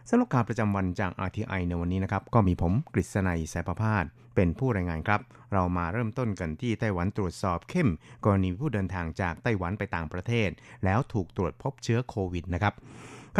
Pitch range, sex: 95-120 Hz, male